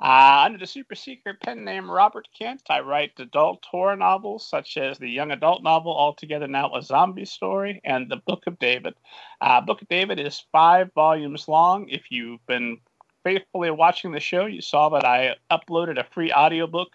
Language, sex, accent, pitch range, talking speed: English, male, American, 145-195 Hz, 190 wpm